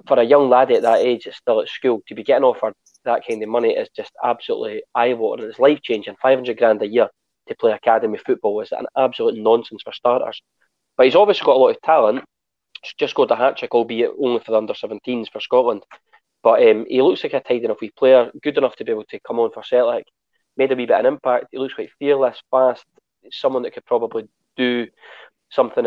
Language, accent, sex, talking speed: English, British, male, 225 wpm